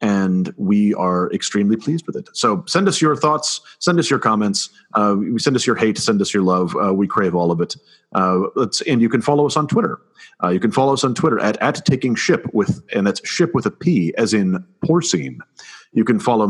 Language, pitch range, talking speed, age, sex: English, 100-150 Hz, 230 wpm, 30-49, male